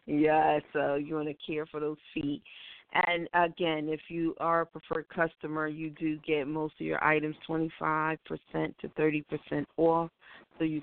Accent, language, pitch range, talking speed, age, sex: American, English, 155-170 Hz, 165 wpm, 40-59, female